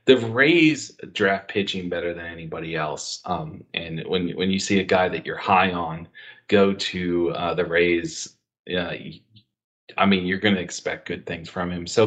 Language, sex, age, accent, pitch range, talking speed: English, male, 40-59, American, 90-110 Hz, 185 wpm